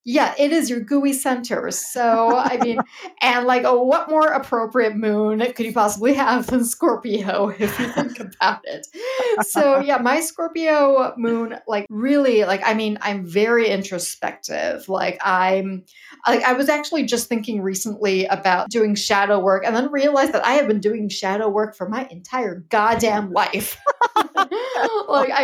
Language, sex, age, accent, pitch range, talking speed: English, female, 40-59, American, 210-265 Hz, 165 wpm